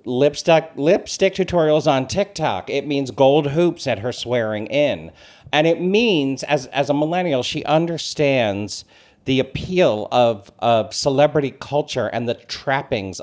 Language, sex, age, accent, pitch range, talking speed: English, male, 50-69, American, 110-150 Hz, 140 wpm